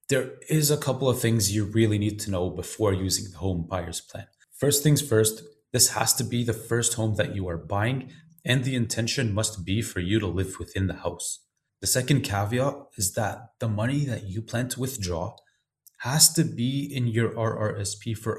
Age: 20-39